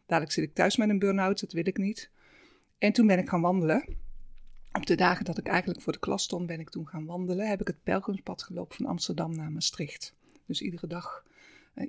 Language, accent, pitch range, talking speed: Dutch, Dutch, 170-205 Hz, 225 wpm